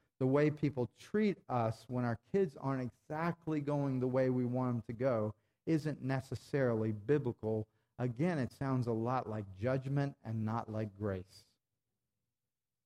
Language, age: English, 40-59